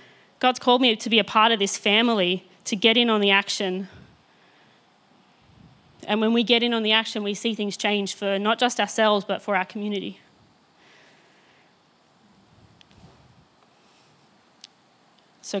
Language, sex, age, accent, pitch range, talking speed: English, female, 20-39, Australian, 200-235 Hz, 140 wpm